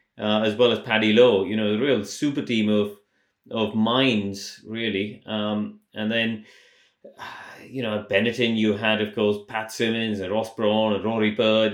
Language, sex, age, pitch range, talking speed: English, male, 30-49, 105-115 Hz, 180 wpm